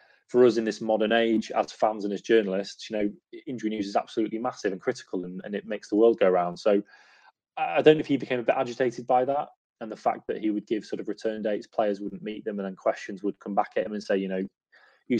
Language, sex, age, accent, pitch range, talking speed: English, male, 20-39, British, 100-115 Hz, 270 wpm